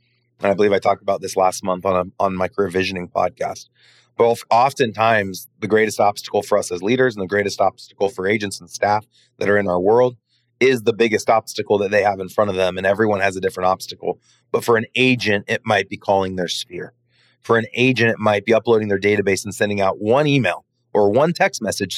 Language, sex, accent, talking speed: English, male, American, 225 wpm